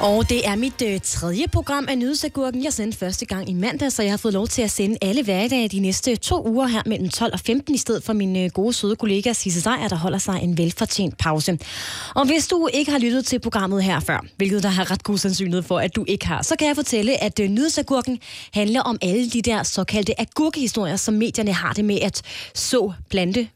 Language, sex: Danish, female